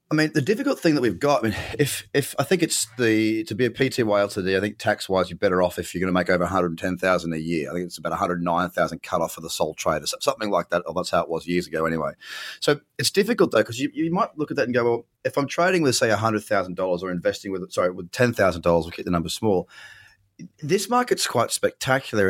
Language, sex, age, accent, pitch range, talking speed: English, male, 30-49, Australian, 95-145 Hz, 285 wpm